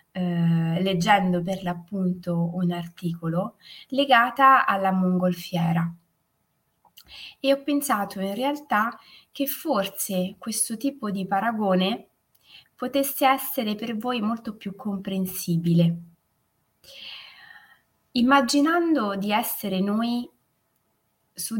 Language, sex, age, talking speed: Italian, female, 20-39, 85 wpm